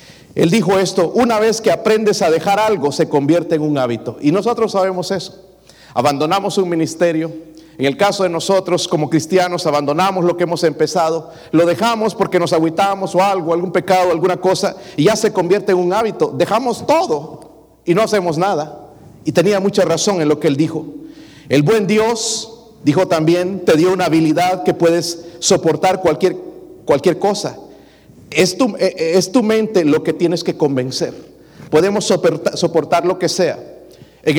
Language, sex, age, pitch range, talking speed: Spanish, male, 40-59, 150-190 Hz, 170 wpm